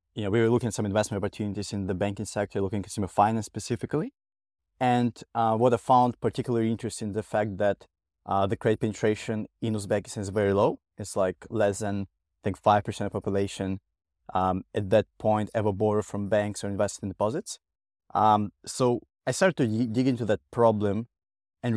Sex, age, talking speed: male, 20-39, 185 wpm